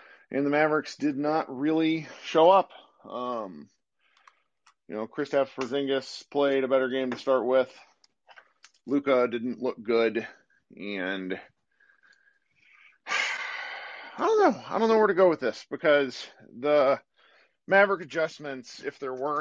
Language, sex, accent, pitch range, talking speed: English, male, American, 130-180 Hz, 135 wpm